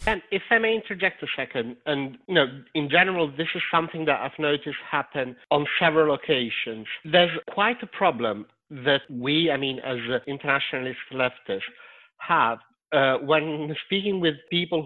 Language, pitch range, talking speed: Italian, 140-185 Hz, 160 wpm